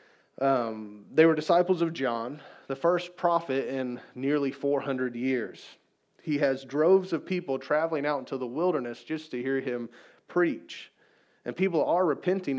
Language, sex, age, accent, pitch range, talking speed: English, male, 30-49, American, 125-155 Hz, 155 wpm